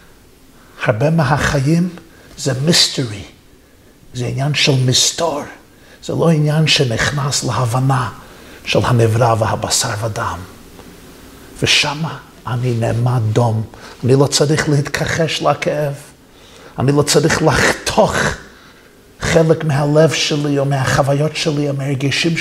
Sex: male